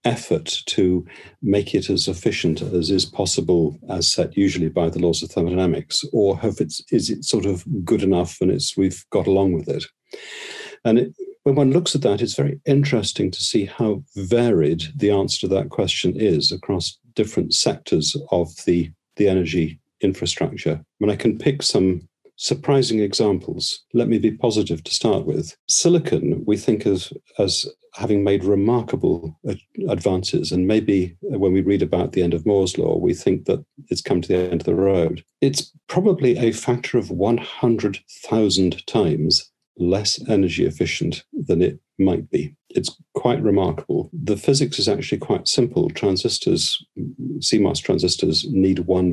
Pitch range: 85-115 Hz